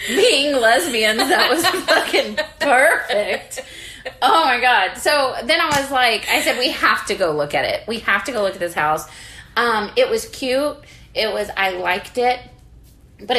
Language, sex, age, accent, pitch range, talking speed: English, female, 20-39, American, 170-215 Hz, 185 wpm